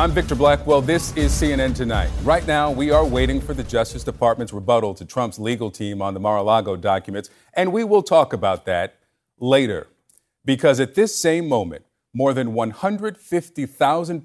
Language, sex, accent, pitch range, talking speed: English, male, American, 110-150 Hz, 170 wpm